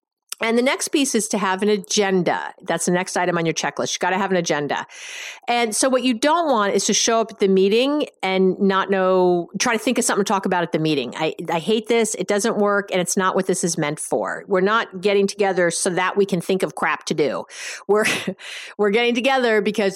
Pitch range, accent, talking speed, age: 185-230 Hz, American, 245 wpm, 50-69